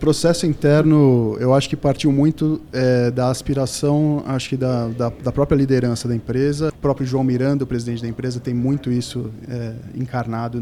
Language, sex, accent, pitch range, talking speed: Portuguese, male, Brazilian, 125-155 Hz, 180 wpm